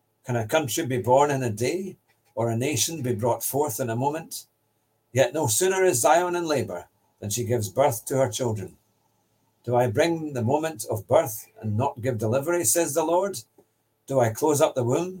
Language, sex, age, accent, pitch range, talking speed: English, male, 60-79, British, 110-150 Hz, 200 wpm